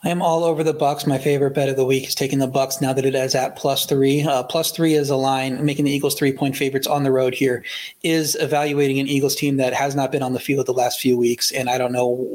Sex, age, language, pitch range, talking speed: male, 30-49, English, 130-145 Hz, 280 wpm